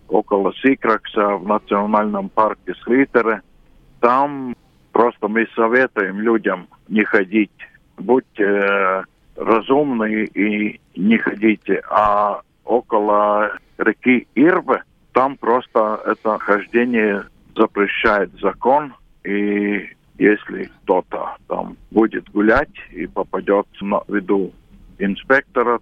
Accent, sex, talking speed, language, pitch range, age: native, male, 90 wpm, Russian, 100-120 Hz, 50-69